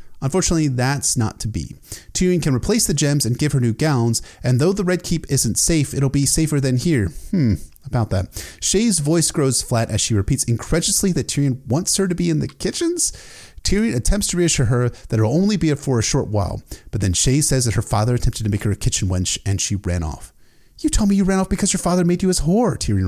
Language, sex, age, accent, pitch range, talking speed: English, male, 30-49, American, 100-165 Hz, 240 wpm